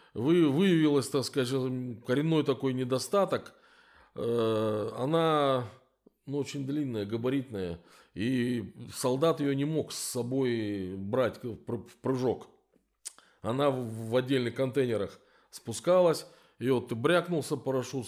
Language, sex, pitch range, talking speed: Russian, male, 115-145 Hz, 105 wpm